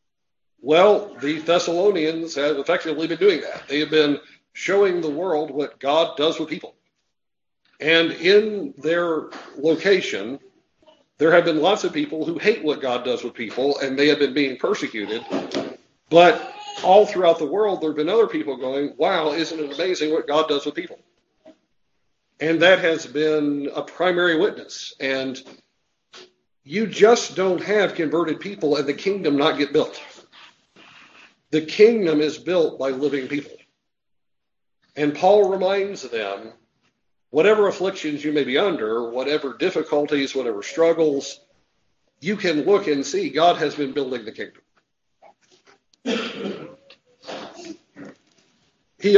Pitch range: 145-195 Hz